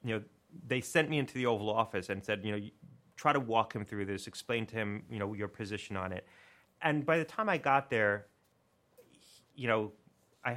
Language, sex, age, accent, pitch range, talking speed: English, male, 30-49, American, 100-125 Hz, 225 wpm